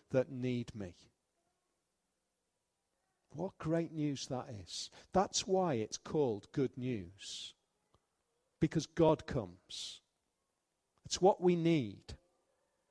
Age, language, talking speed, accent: 40-59, English, 100 wpm, British